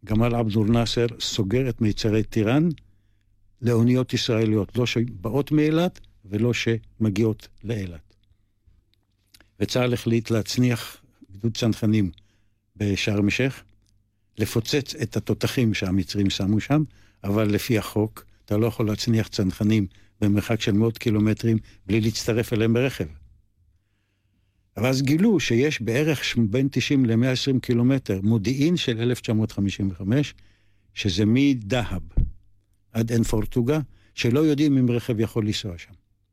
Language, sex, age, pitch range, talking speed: Hebrew, male, 60-79, 100-120 Hz, 110 wpm